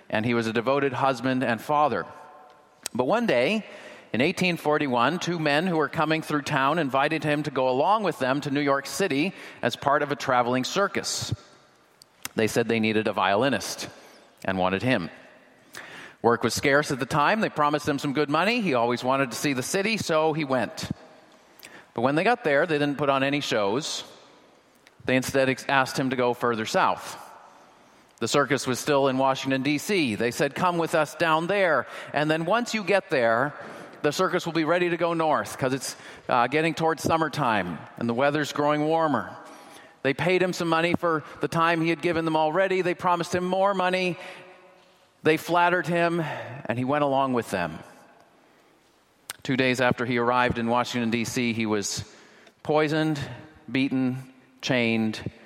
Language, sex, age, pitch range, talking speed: English, male, 30-49, 125-165 Hz, 180 wpm